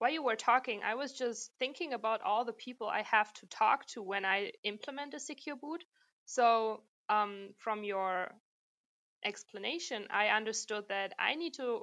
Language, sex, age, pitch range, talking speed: English, female, 20-39, 190-230 Hz, 170 wpm